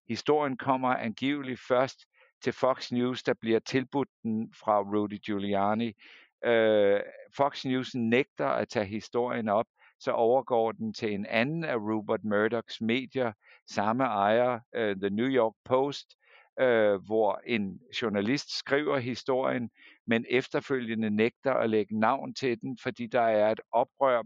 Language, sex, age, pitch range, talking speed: Danish, male, 60-79, 105-125 Hz, 135 wpm